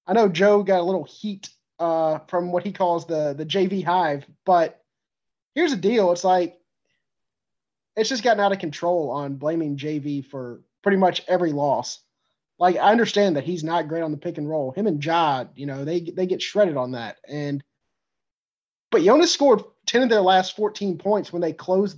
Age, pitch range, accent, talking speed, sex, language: 30-49, 155-195 Hz, American, 195 wpm, male, English